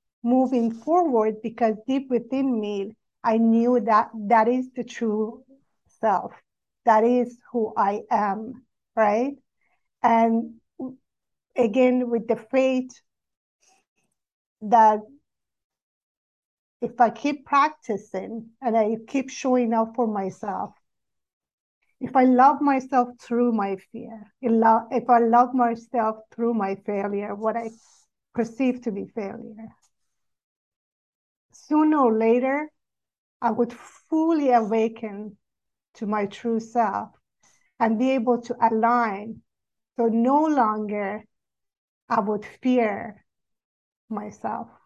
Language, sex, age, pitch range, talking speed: English, female, 50-69, 220-250 Hz, 105 wpm